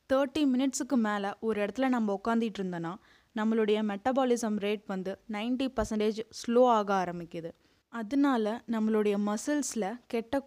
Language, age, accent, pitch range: Tamil, 20-39, native, 205-260 Hz